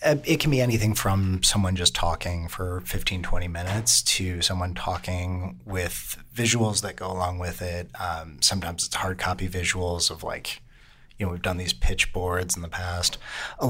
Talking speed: 180 wpm